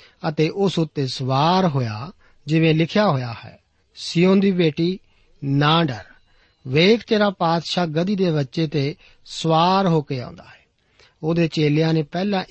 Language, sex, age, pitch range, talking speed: Punjabi, male, 50-69, 140-190 Hz, 145 wpm